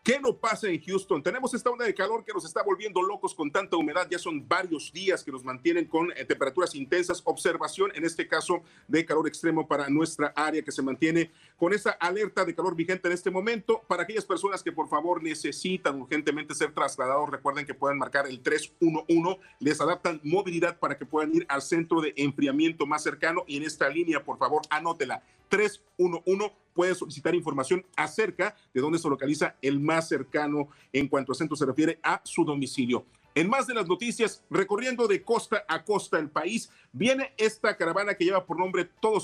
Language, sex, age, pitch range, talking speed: Spanish, male, 40-59, 155-205 Hz, 195 wpm